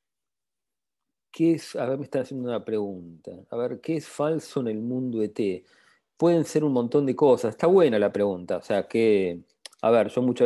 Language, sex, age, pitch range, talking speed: English, male, 40-59, 100-125 Hz, 200 wpm